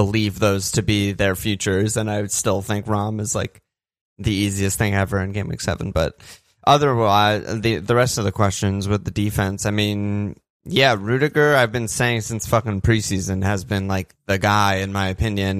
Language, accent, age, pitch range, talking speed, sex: English, American, 20-39, 100-115 Hz, 195 wpm, male